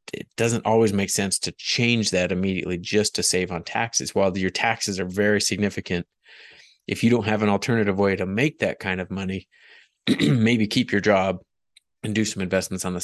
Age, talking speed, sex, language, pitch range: 30-49, 200 wpm, male, English, 95-110 Hz